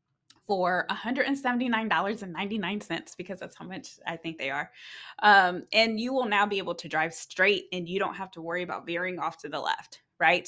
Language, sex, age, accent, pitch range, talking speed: English, female, 20-39, American, 165-210 Hz, 205 wpm